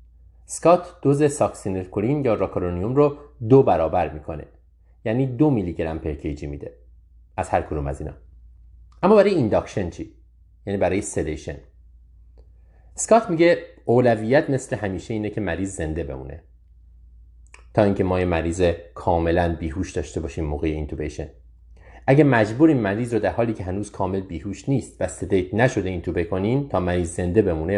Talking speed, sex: 140 wpm, male